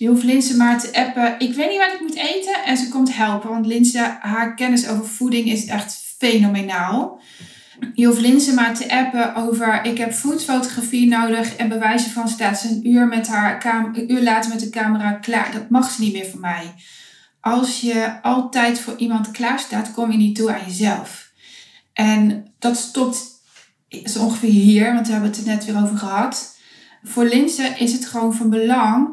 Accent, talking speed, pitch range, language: Dutch, 190 wpm, 220-250 Hz, Dutch